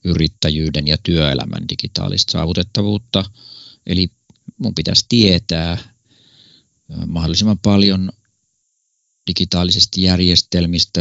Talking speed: 70 wpm